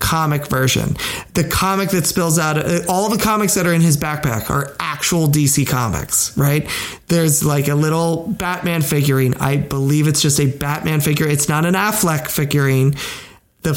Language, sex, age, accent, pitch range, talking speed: English, male, 20-39, American, 145-180 Hz, 170 wpm